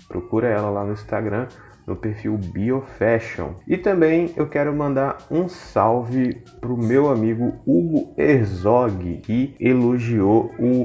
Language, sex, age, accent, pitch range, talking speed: Portuguese, male, 30-49, Brazilian, 100-125 Hz, 140 wpm